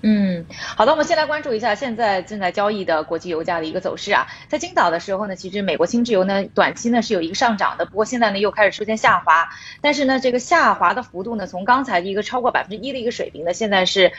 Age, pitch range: 20-39, 180-255 Hz